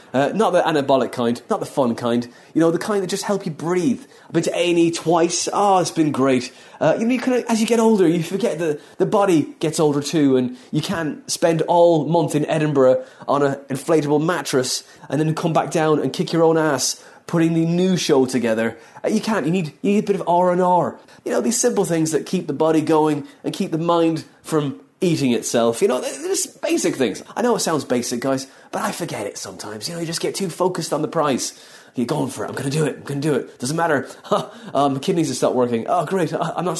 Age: 30-49